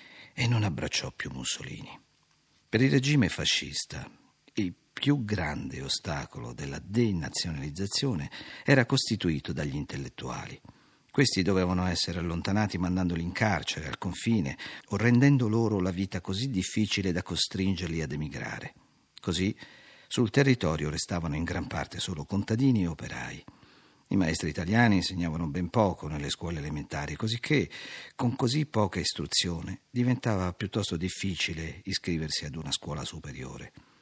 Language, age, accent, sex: Italian, 50-69, native, male